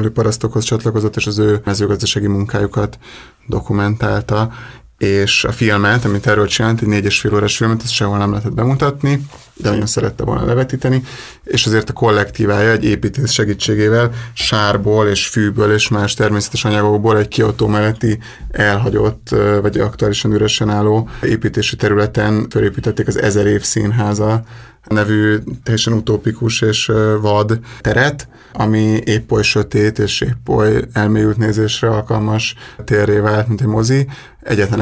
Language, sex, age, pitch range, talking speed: Hungarian, male, 30-49, 105-115 Hz, 135 wpm